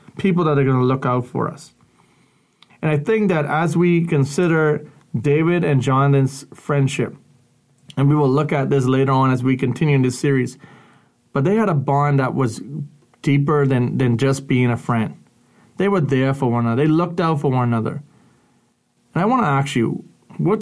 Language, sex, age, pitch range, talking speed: English, male, 30-49, 135-160 Hz, 195 wpm